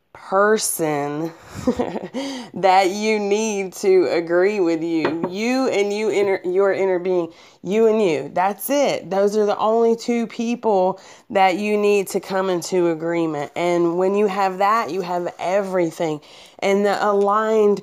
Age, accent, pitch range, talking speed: 30-49, American, 175-210 Hz, 150 wpm